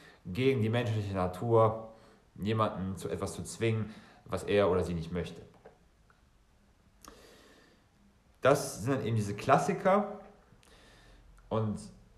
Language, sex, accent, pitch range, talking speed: German, male, German, 100-130 Hz, 105 wpm